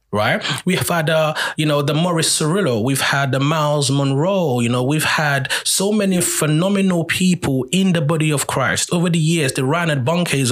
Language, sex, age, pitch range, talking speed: English, male, 30-49, 130-175 Hz, 200 wpm